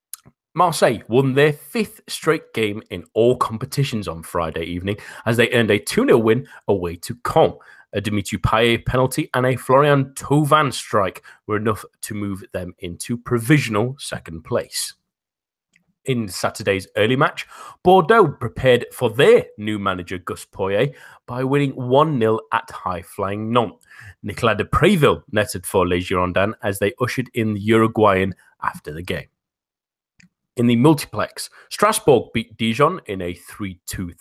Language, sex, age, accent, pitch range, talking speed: English, male, 30-49, British, 95-135 Hz, 145 wpm